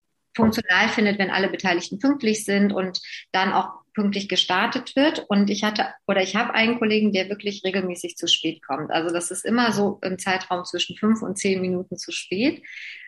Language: German